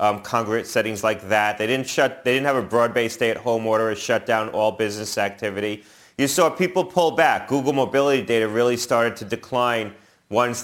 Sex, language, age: male, English, 30-49